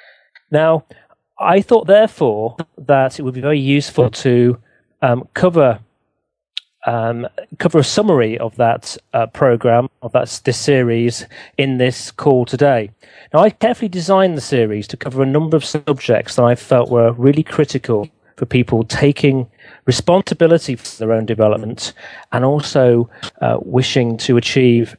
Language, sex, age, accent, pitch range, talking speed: English, male, 40-59, British, 120-155 Hz, 145 wpm